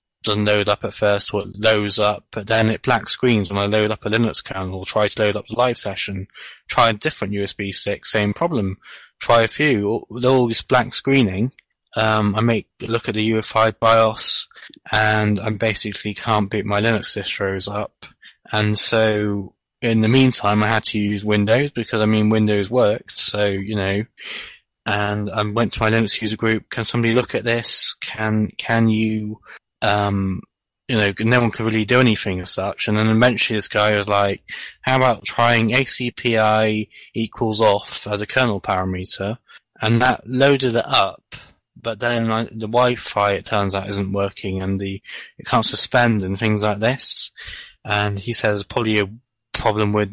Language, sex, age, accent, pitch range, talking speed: English, male, 20-39, British, 105-115 Hz, 185 wpm